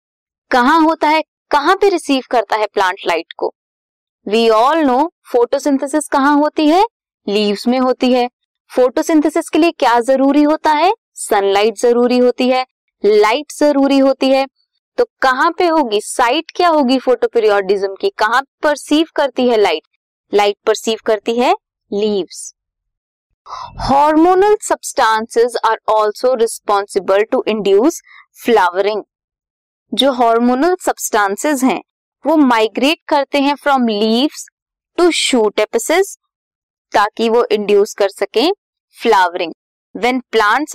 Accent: native